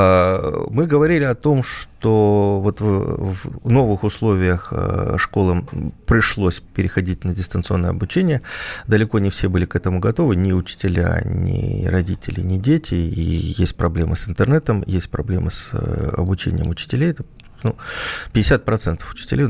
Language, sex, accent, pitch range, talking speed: Russian, male, native, 90-110 Hz, 120 wpm